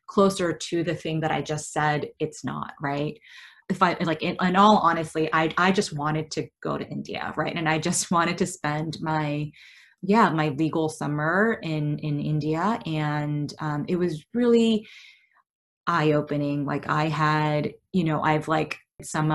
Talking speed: 175 wpm